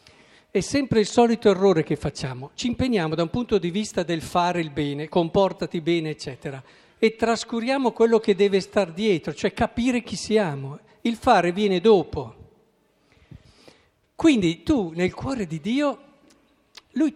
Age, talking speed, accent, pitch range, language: 50-69, 150 wpm, native, 160-230 Hz, Italian